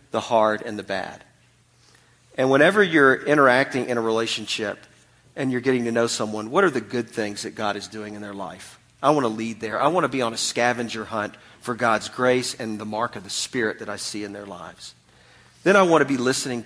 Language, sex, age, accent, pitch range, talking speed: English, male, 40-59, American, 110-135 Hz, 230 wpm